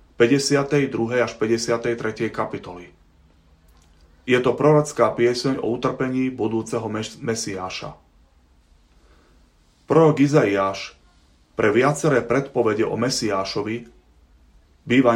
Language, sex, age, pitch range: Slovak, male, 30-49, 95-125 Hz